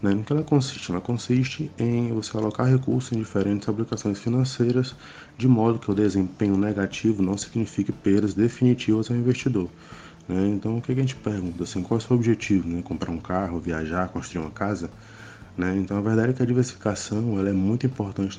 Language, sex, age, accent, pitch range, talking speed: Portuguese, male, 20-39, Brazilian, 95-115 Hz, 195 wpm